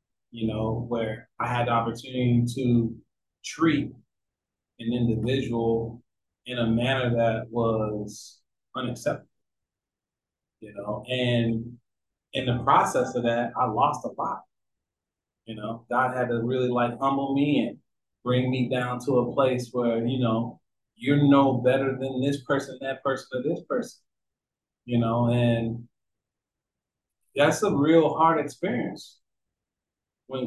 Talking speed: 135 wpm